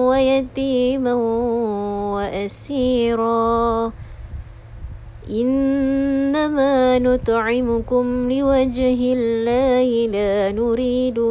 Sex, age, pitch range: female, 20-39, 230-270 Hz